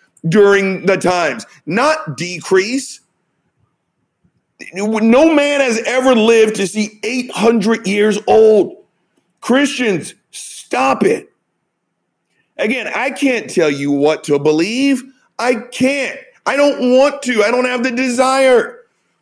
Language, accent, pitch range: English, American, 195-250 Hz